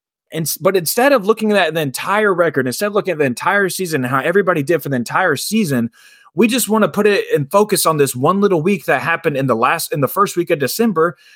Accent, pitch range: American, 160-220 Hz